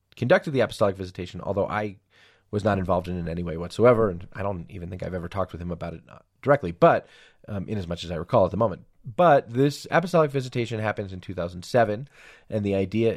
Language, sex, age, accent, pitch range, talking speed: English, male, 30-49, American, 95-115 Hz, 220 wpm